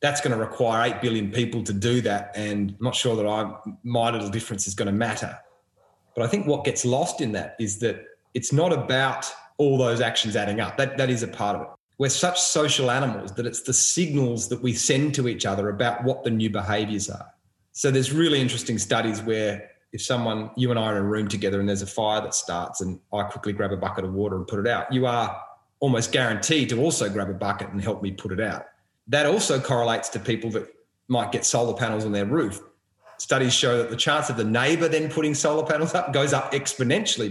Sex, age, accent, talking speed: male, 30-49, Australian, 235 wpm